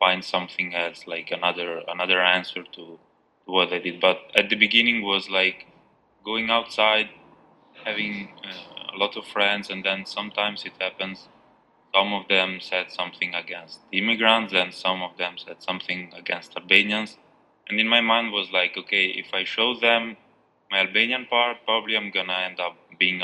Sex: male